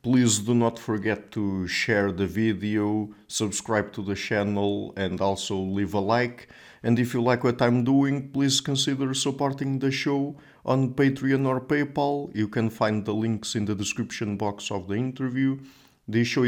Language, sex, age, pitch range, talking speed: English, male, 50-69, 105-115 Hz, 170 wpm